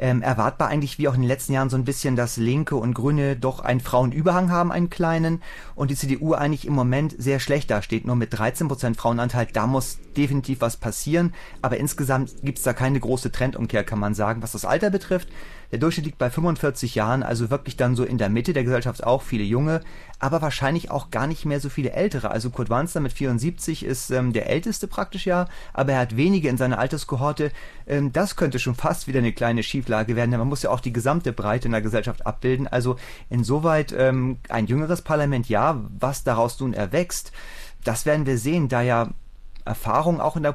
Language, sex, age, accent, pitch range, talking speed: German, male, 30-49, German, 120-155 Hz, 215 wpm